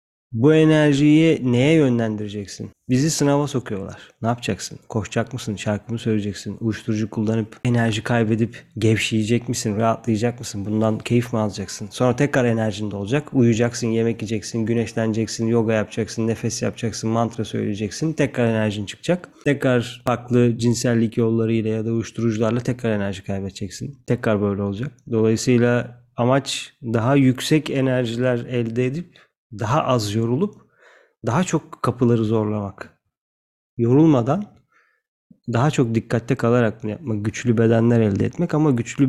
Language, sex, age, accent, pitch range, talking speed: Turkish, male, 30-49, native, 110-125 Hz, 130 wpm